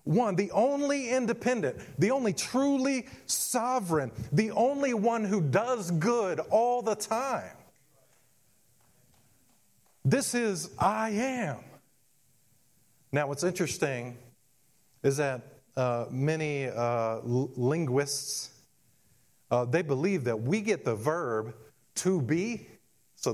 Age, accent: 50-69, American